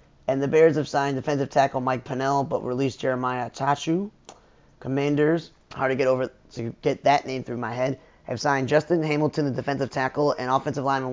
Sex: male